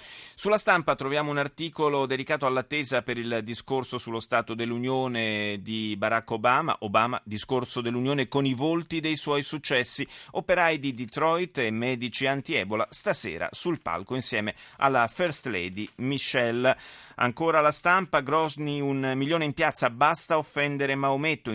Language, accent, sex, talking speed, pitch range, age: Italian, native, male, 140 wpm, 115-150 Hz, 30-49